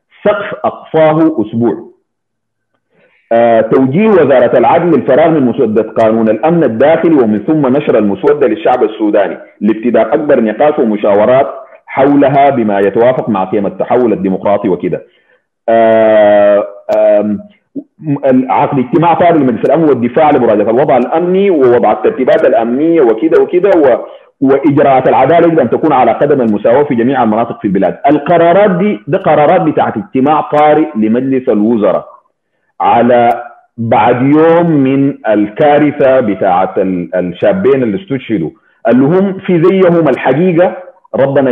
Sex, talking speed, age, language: male, 120 wpm, 40-59, Arabic